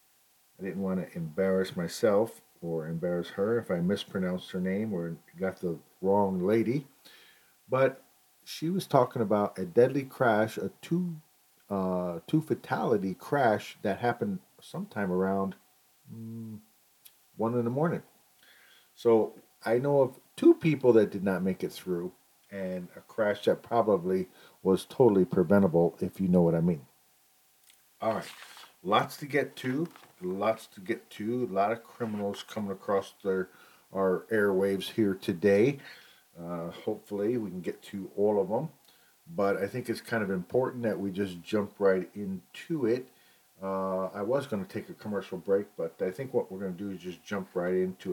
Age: 50-69